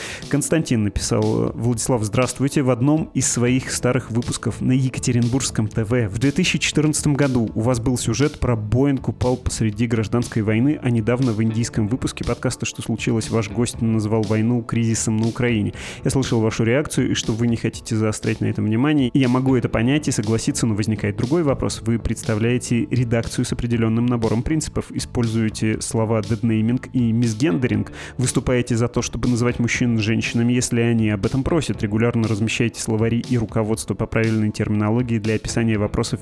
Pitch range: 110-130 Hz